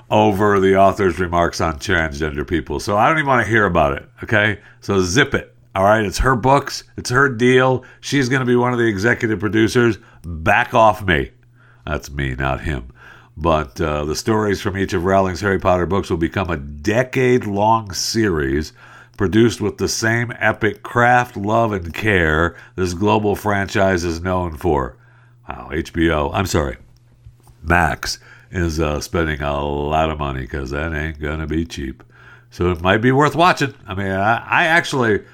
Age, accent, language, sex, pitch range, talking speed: 60-79, American, English, male, 80-115 Hz, 175 wpm